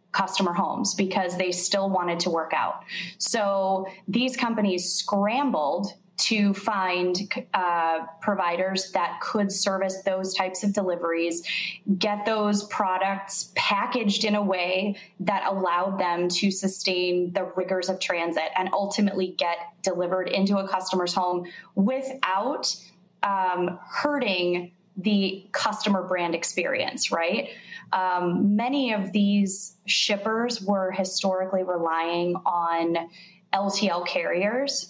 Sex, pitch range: female, 180-205 Hz